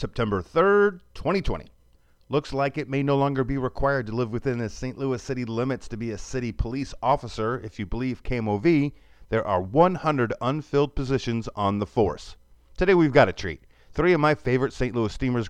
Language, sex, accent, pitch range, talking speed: English, male, American, 100-135 Hz, 190 wpm